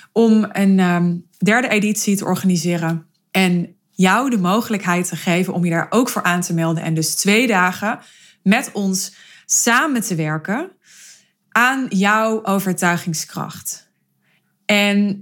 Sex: female